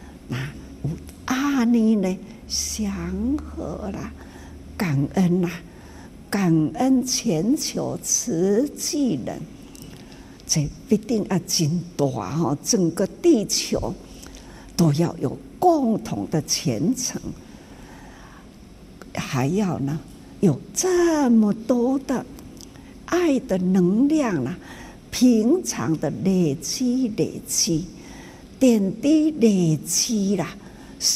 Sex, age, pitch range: female, 60-79, 160-255 Hz